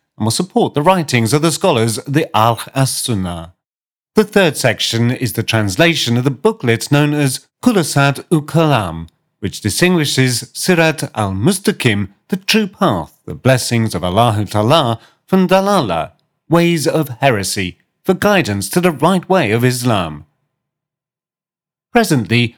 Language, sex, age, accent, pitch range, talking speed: English, male, 40-59, British, 115-170 Hz, 130 wpm